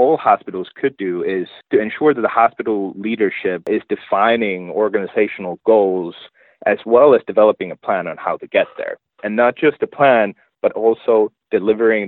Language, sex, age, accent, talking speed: English, male, 30-49, American, 170 wpm